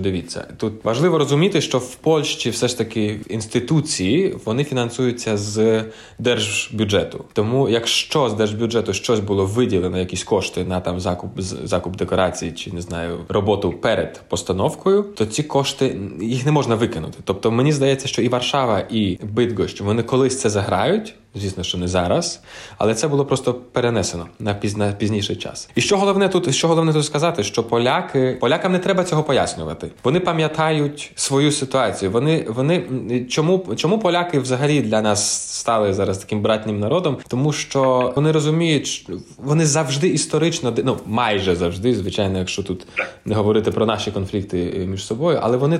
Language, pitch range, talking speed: Ukrainian, 105-150 Hz, 160 wpm